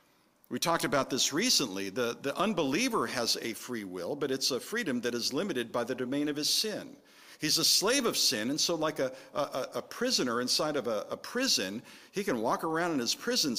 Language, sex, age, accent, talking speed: English, male, 50-69, American, 215 wpm